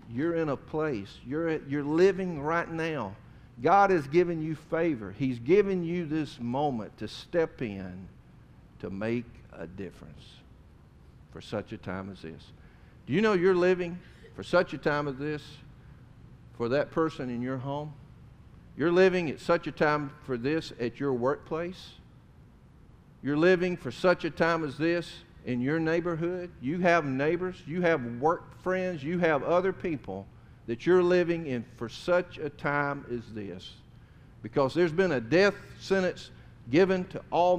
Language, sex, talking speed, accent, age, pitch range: English, male, 160 wpm, American, 50-69, 120-170 Hz